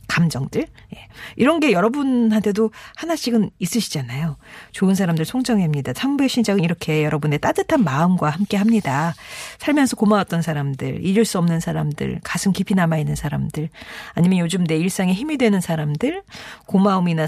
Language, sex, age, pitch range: Korean, female, 40-59, 160-235 Hz